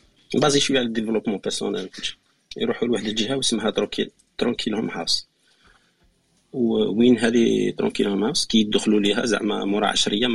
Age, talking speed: 40-59, 145 wpm